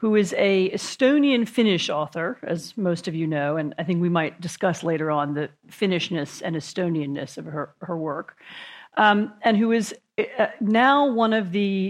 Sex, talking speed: female, 170 wpm